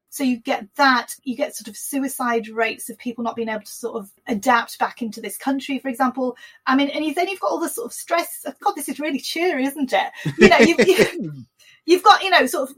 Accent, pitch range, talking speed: British, 235-300 Hz, 245 wpm